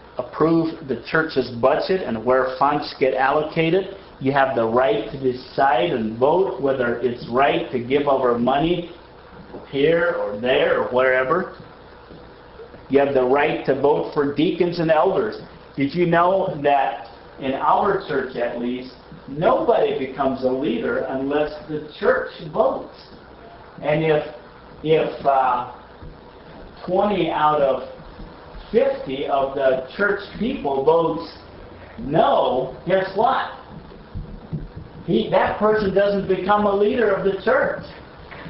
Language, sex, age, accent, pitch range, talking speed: English, male, 50-69, American, 130-185 Hz, 125 wpm